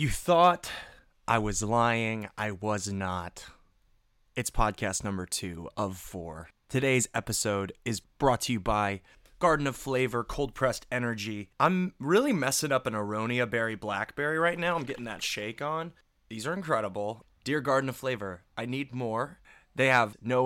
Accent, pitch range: American, 100-130 Hz